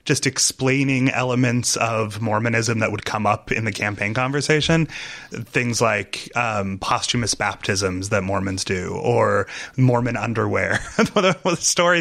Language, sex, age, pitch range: English, male, 20-39, 105-140 Hz